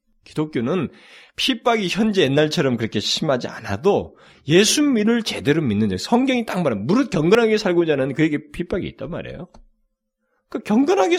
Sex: male